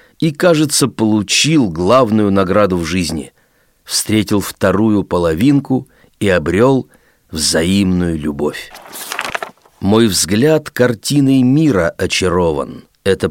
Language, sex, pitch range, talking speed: Russian, male, 95-130 Hz, 90 wpm